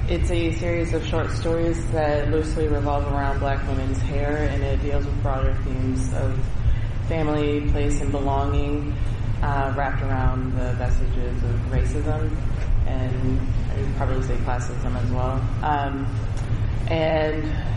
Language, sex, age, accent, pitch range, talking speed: English, female, 20-39, American, 110-135 Hz, 140 wpm